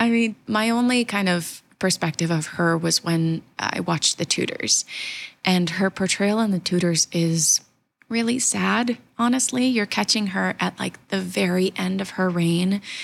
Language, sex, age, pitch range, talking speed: English, female, 20-39, 170-195 Hz, 165 wpm